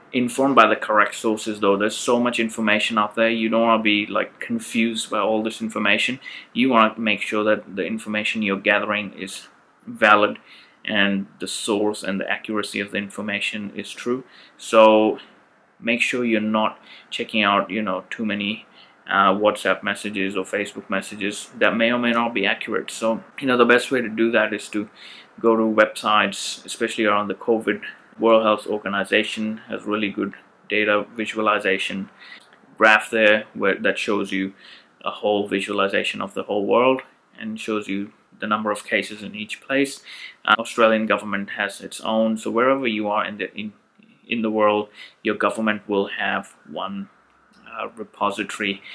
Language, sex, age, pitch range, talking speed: English, male, 20-39, 105-115 Hz, 170 wpm